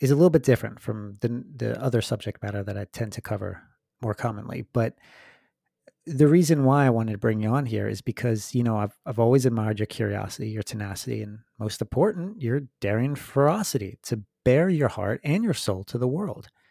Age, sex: 30-49, male